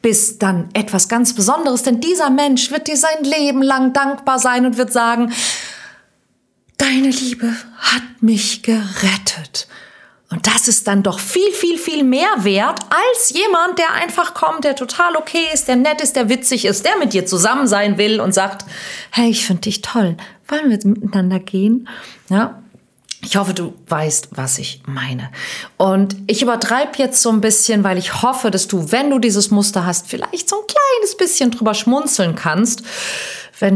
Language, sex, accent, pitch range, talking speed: German, female, German, 190-255 Hz, 180 wpm